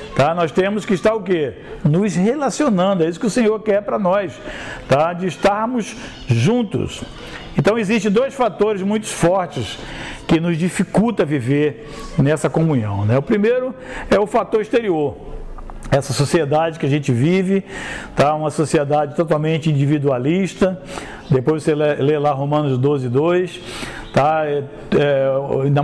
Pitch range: 155-200 Hz